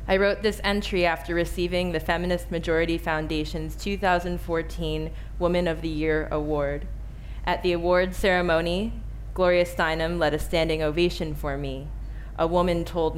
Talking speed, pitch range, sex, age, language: 140 wpm, 155-180 Hz, female, 20-39, English